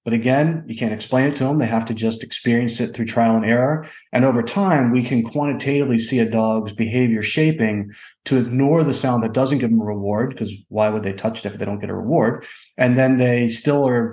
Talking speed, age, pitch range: 240 wpm, 30-49, 115-130 Hz